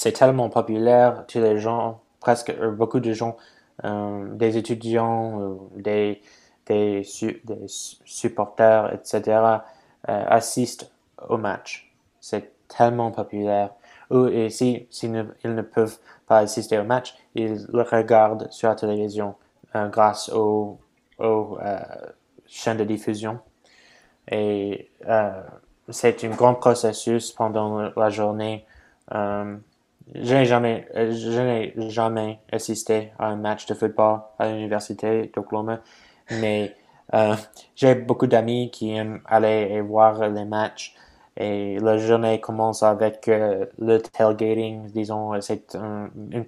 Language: English